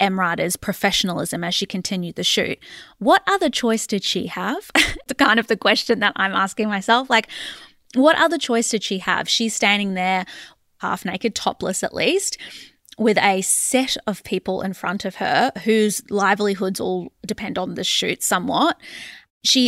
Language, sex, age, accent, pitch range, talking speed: English, female, 20-39, Australian, 190-230 Hz, 170 wpm